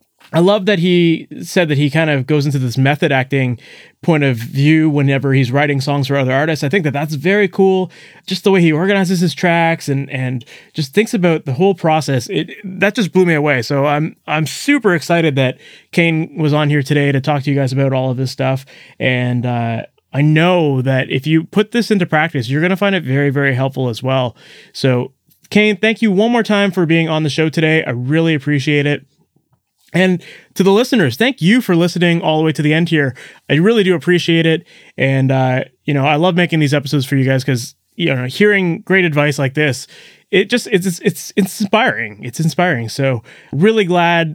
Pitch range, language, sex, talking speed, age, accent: 140-185 Hz, English, male, 215 wpm, 20-39, American